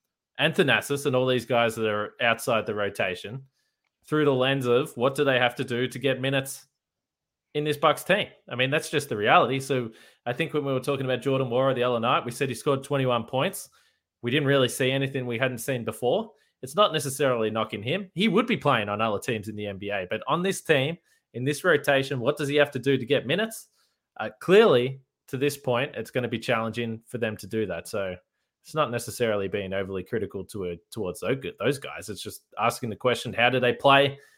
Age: 20-39